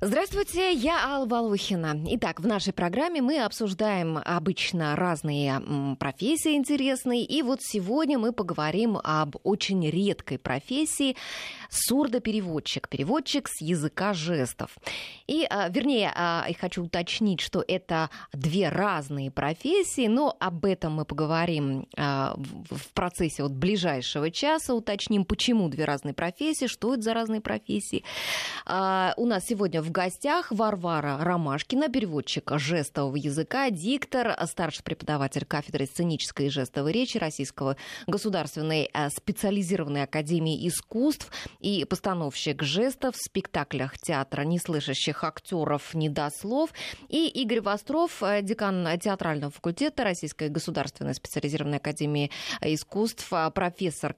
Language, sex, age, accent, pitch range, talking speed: Russian, female, 20-39, native, 150-230 Hz, 115 wpm